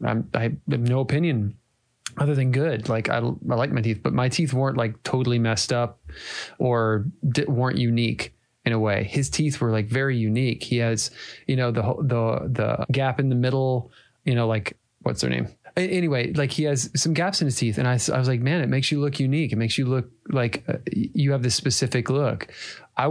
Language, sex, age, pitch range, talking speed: English, male, 20-39, 115-140 Hz, 215 wpm